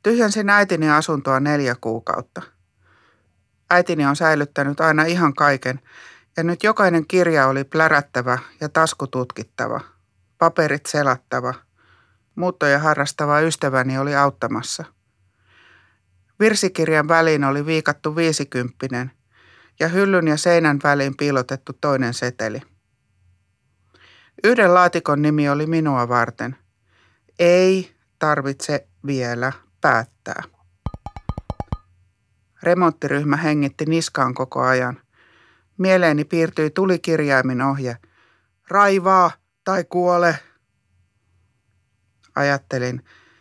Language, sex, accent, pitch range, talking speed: Finnish, male, native, 115-160 Hz, 85 wpm